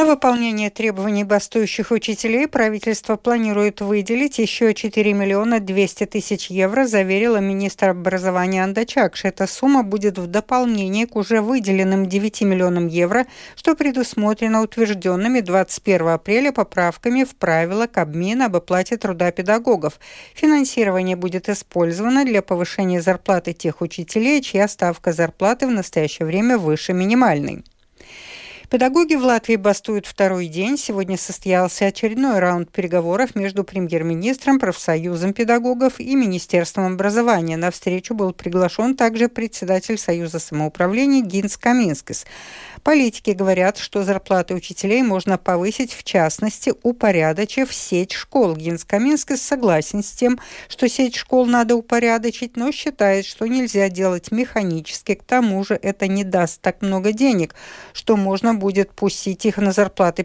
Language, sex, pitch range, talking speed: Russian, female, 185-235 Hz, 130 wpm